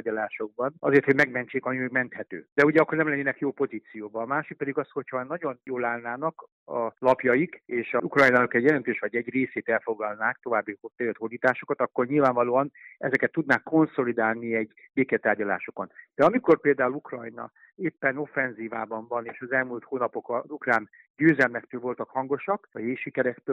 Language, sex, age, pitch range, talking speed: Hungarian, male, 60-79, 120-150 Hz, 155 wpm